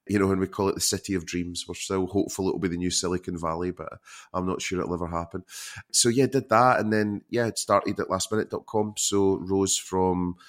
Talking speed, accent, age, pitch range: 230 wpm, British, 30-49, 85-95 Hz